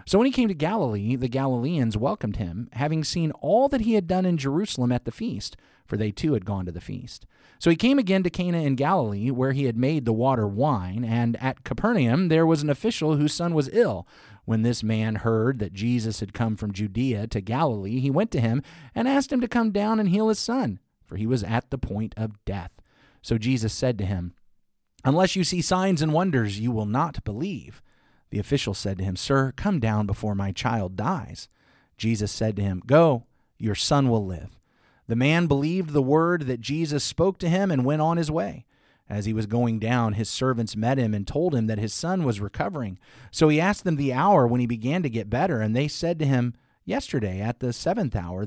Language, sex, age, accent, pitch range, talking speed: English, male, 30-49, American, 110-160 Hz, 225 wpm